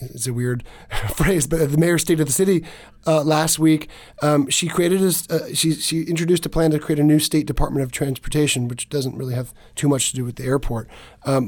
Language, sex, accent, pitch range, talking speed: English, male, American, 125-155 Hz, 225 wpm